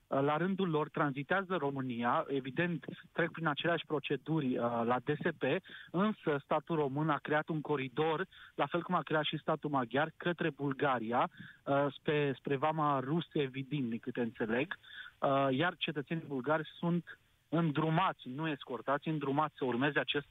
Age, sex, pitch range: 30-49, male, 135-160 Hz